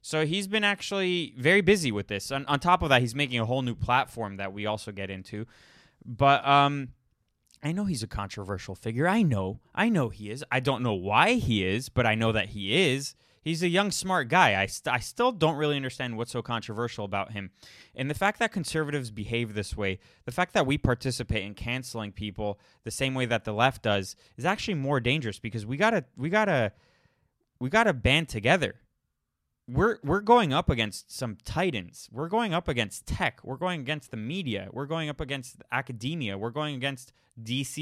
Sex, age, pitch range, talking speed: male, 20-39, 110-155 Hz, 205 wpm